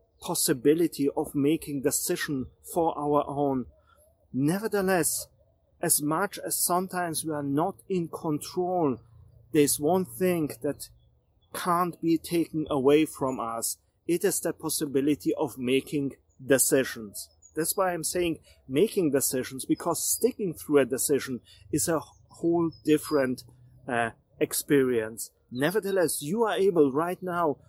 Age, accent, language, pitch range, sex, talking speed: 40-59, German, English, 135-165 Hz, male, 125 wpm